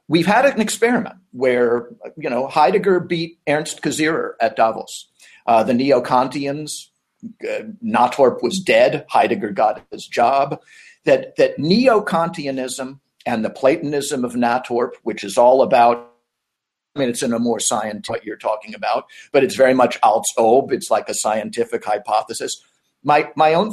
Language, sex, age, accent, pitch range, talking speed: English, male, 50-69, American, 130-205 Hz, 150 wpm